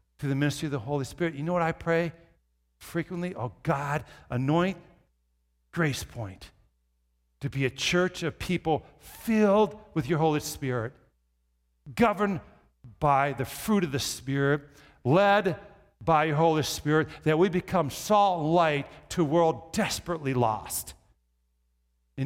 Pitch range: 115-175 Hz